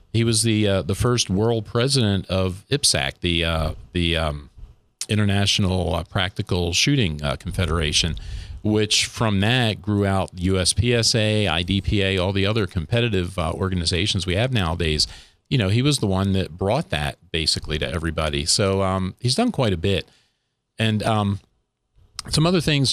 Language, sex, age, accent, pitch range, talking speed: English, male, 40-59, American, 85-105 Hz, 155 wpm